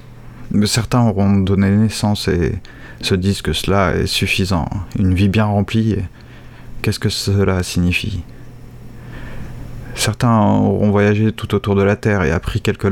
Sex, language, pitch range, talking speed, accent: male, French, 100-120 Hz, 140 wpm, French